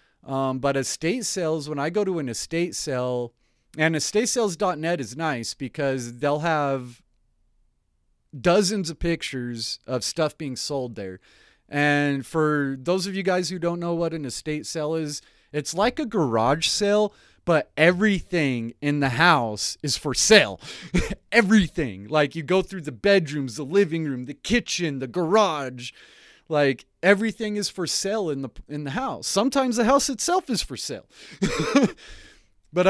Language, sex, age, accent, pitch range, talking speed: English, male, 30-49, American, 135-180 Hz, 155 wpm